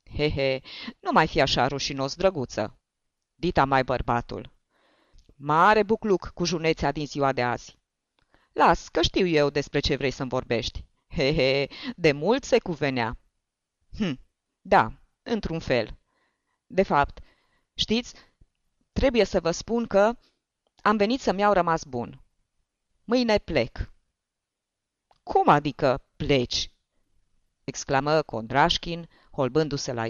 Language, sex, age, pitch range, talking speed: Romanian, female, 30-49, 130-195 Hz, 125 wpm